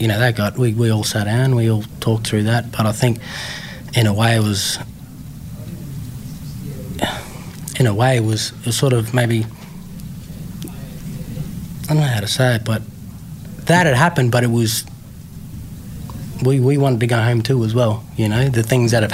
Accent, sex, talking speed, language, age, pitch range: Australian, male, 190 wpm, English, 20-39, 110-130 Hz